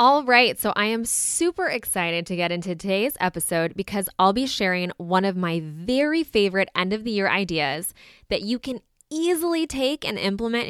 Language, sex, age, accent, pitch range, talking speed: English, female, 20-39, American, 175-230 Hz, 185 wpm